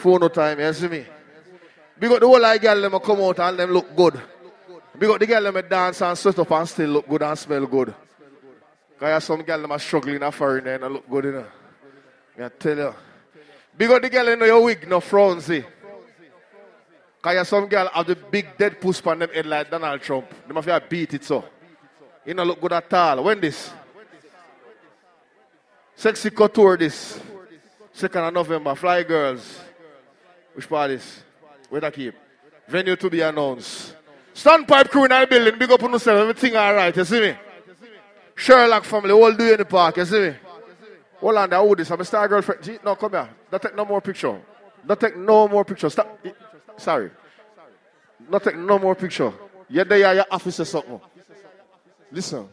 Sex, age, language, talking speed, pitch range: male, 20-39, English, 180 wpm, 150-205 Hz